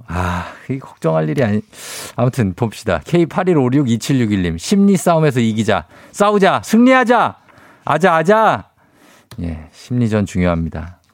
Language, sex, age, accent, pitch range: Korean, male, 50-69, native, 100-155 Hz